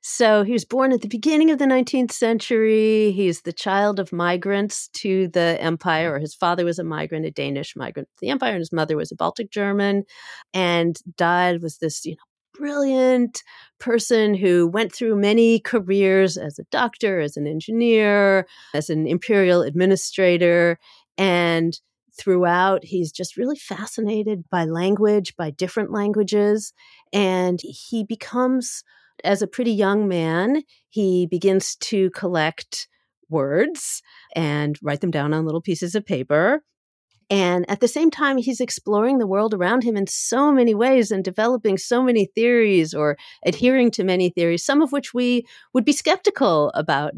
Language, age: English, 40-59